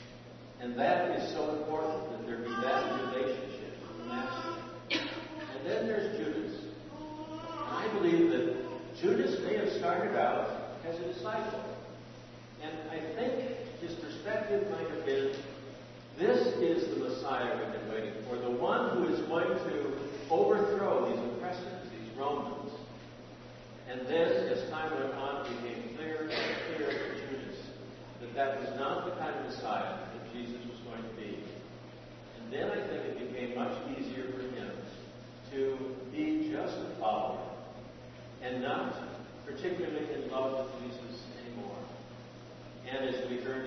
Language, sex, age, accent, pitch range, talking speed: English, male, 60-79, American, 120-155 Hz, 145 wpm